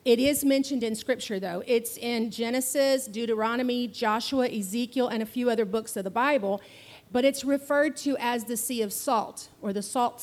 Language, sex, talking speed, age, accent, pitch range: English, female, 190 wpm, 40-59, American, 220-265 Hz